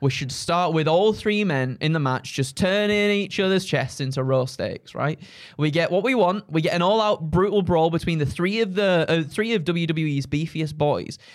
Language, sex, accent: English, male, British